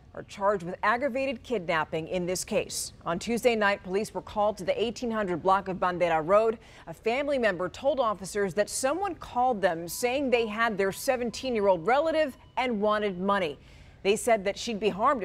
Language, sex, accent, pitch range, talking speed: English, female, American, 180-220 Hz, 175 wpm